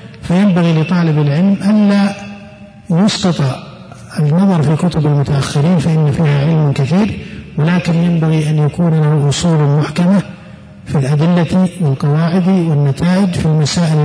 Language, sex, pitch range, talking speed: Arabic, male, 145-175 Hz, 110 wpm